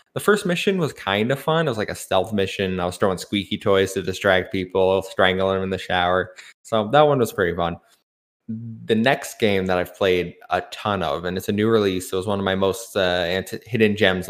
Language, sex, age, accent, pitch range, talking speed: English, male, 20-39, American, 95-115 Hz, 235 wpm